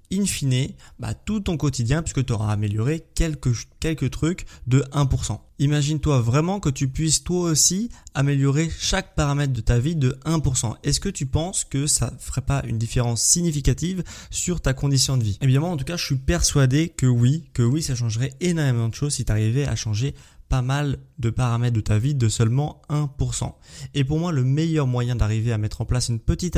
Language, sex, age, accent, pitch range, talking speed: French, male, 20-39, French, 120-150 Hz, 210 wpm